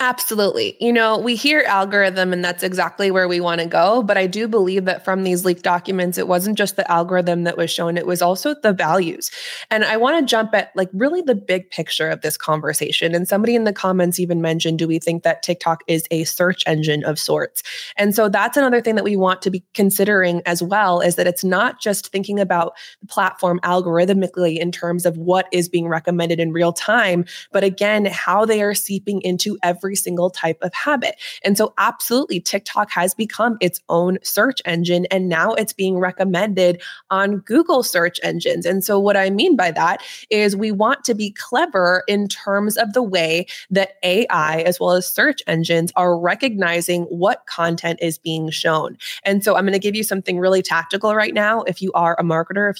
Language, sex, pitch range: English, female, 175-210 Hz